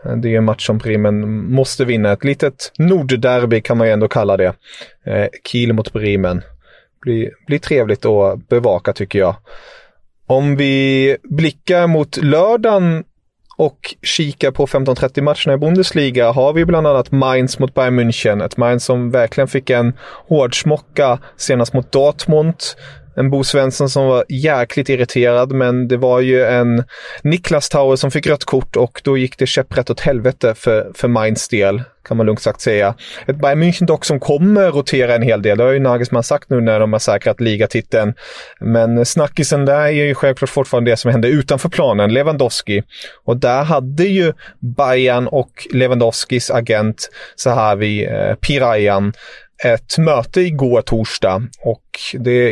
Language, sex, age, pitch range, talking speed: English, male, 30-49, 120-145 Hz, 160 wpm